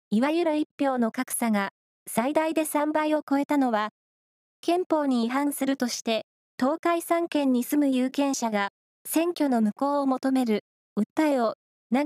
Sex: female